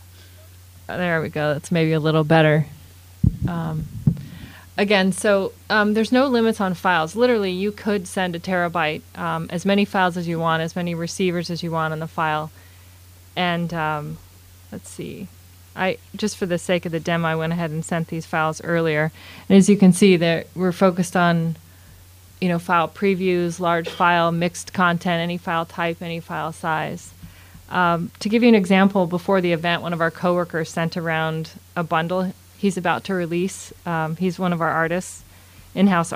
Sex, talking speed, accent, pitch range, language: female, 185 wpm, American, 160-185 Hz, English